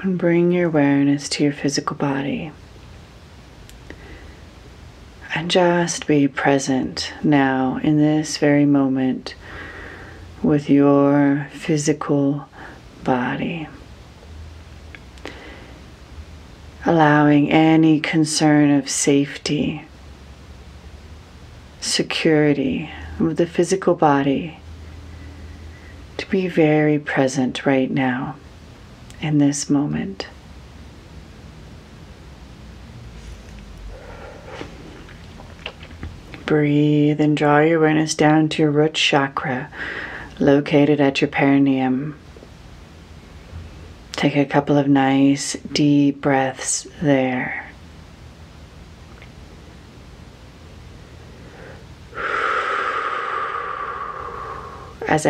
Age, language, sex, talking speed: 40-59, English, female, 70 wpm